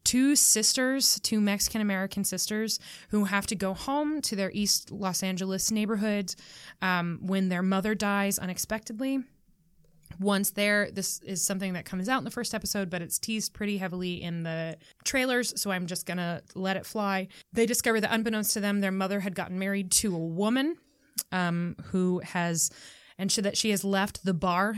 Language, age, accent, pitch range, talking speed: English, 20-39, American, 175-210 Hz, 180 wpm